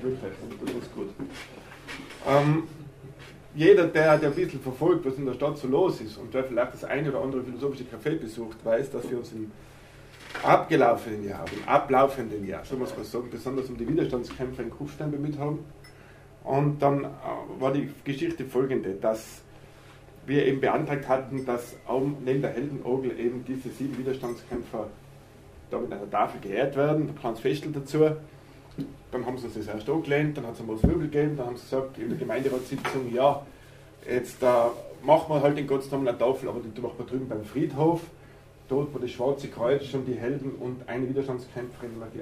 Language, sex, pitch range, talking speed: German, male, 120-140 Hz, 180 wpm